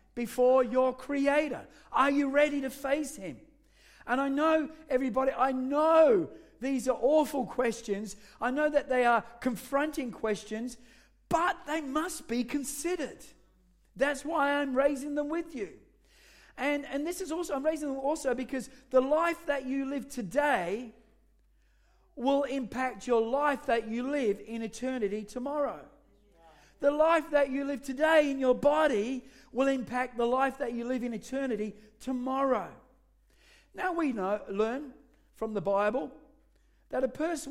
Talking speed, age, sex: 150 wpm, 40-59, male